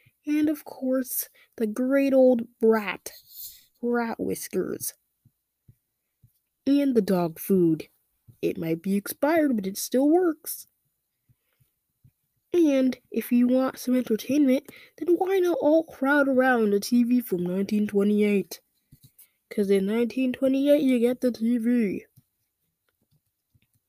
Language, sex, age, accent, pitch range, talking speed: English, female, 20-39, American, 210-270 Hz, 110 wpm